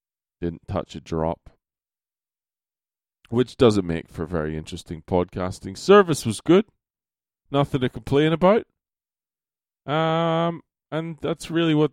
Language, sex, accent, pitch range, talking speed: English, male, American, 85-110 Hz, 115 wpm